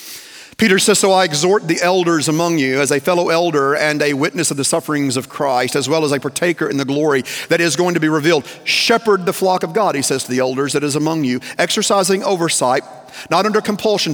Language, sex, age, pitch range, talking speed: English, male, 40-59, 130-165 Hz, 230 wpm